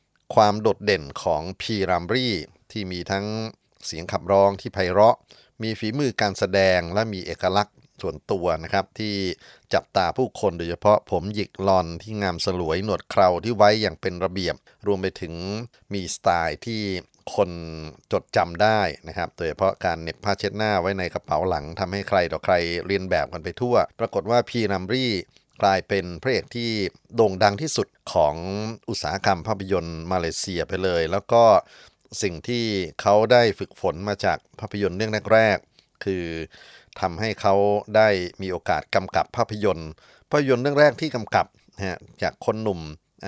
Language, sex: Thai, male